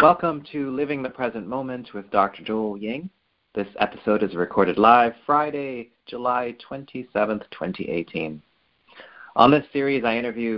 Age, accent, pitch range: 30-49, American, 100-135 Hz